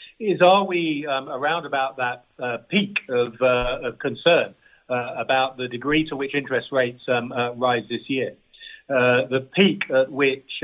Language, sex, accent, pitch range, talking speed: English, male, British, 125-150 Hz, 175 wpm